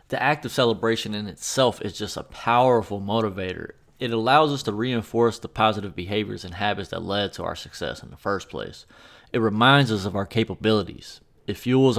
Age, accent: 20-39, American